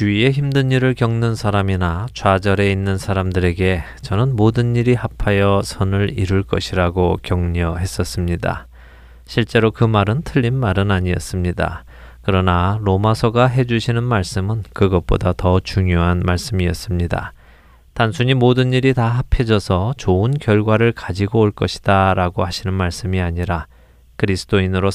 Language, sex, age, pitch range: Korean, male, 20-39, 85-115 Hz